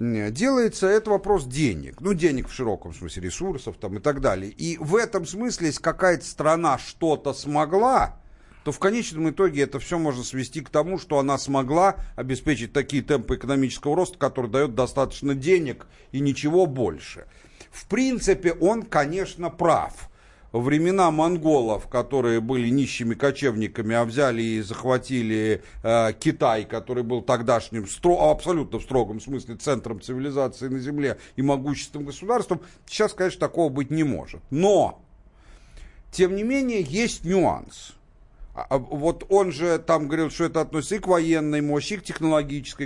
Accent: native